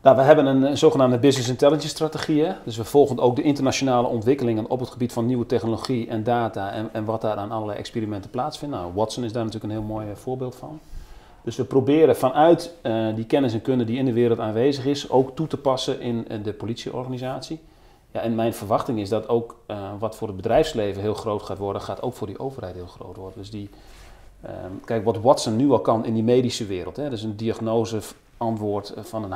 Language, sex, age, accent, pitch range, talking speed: Dutch, male, 40-59, Dutch, 110-130 Hz, 225 wpm